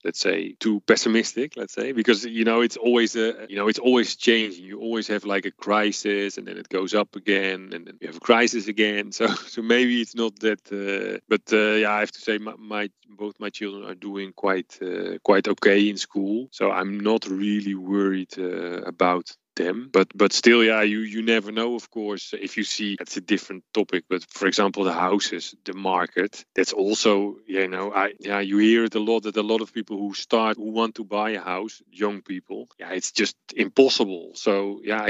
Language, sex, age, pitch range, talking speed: Turkish, male, 30-49, 100-115 Hz, 215 wpm